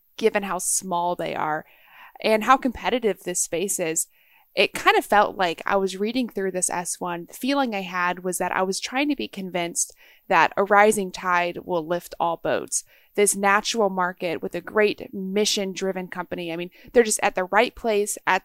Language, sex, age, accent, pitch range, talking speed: English, female, 20-39, American, 185-220 Hz, 190 wpm